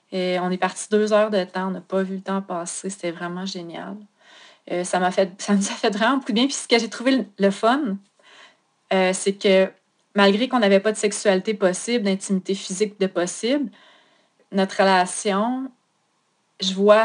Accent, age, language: Canadian, 30-49, French